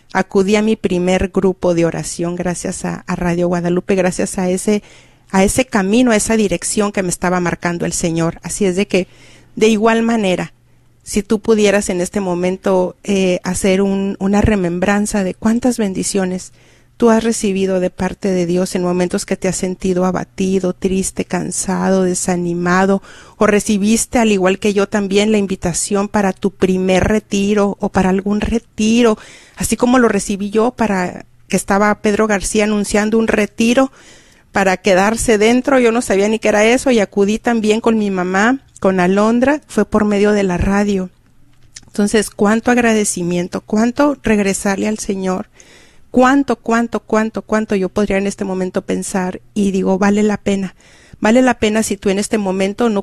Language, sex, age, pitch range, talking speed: Spanish, female, 40-59, 185-220 Hz, 170 wpm